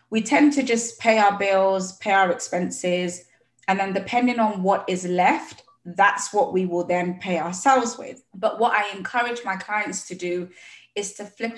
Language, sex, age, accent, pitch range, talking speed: English, female, 20-39, British, 180-225 Hz, 185 wpm